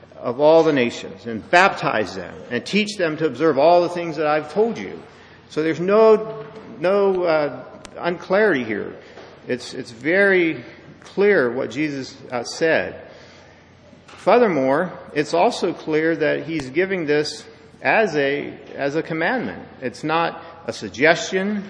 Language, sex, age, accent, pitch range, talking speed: English, male, 50-69, American, 120-170 Hz, 140 wpm